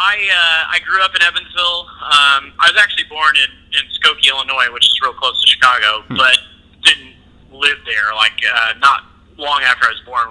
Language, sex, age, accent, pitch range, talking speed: English, male, 30-49, American, 100-150 Hz, 200 wpm